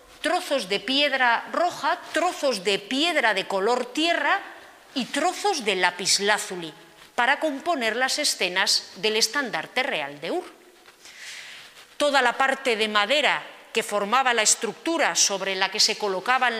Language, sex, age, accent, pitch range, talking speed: Spanish, female, 40-59, Spanish, 220-300 Hz, 135 wpm